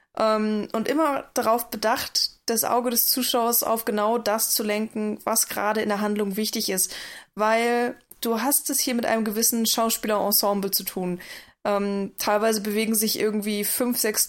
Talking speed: 165 wpm